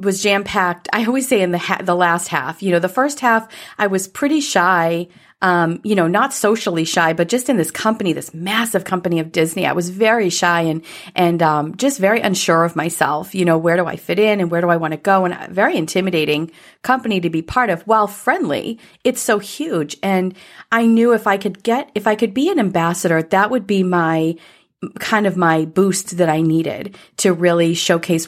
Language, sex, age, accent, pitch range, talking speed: English, female, 40-59, American, 165-210 Hz, 220 wpm